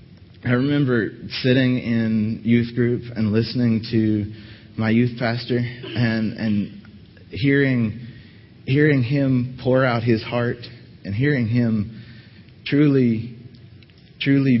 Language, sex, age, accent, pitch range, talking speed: English, male, 30-49, American, 95-115 Hz, 105 wpm